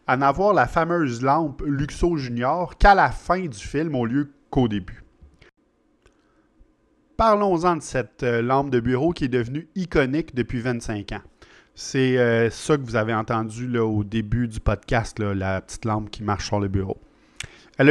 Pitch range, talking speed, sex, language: 115-165 Hz, 175 wpm, male, French